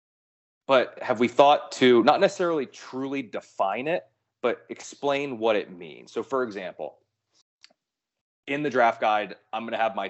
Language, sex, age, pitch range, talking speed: English, male, 30-49, 105-135 Hz, 160 wpm